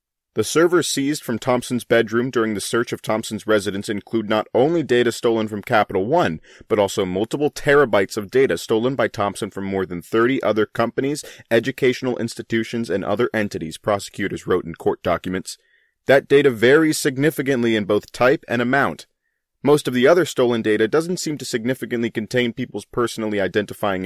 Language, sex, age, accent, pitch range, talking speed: English, male, 30-49, American, 105-135 Hz, 170 wpm